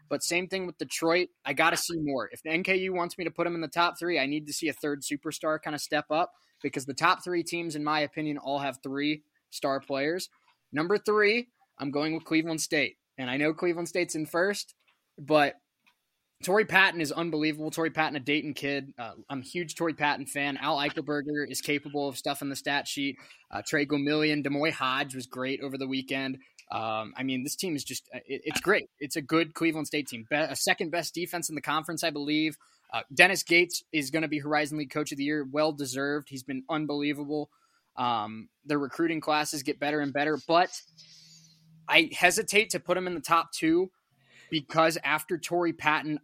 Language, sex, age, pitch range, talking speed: English, male, 20-39, 140-165 Hz, 205 wpm